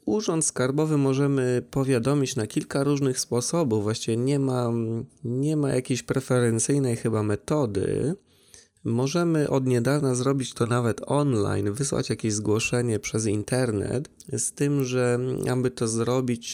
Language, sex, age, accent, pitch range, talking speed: Polish, male, 20-39, native, 105-130 Hz, 125 wpm